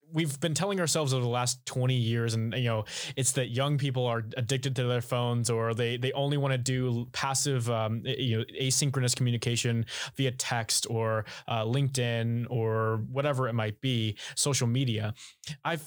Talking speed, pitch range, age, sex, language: 180 wpm, 120-145 Hz, 20-39, male, English